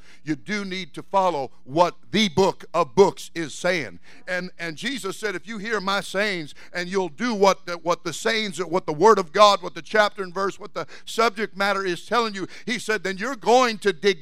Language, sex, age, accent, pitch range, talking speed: English, male, 50-69, American, 165-215 Hz, 225 wpm